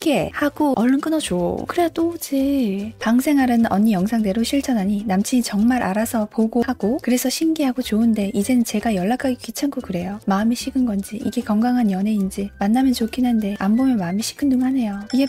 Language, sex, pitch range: Korean, female, 200-255 Hz